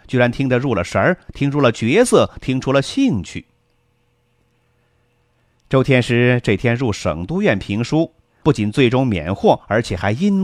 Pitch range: 110-145 Hz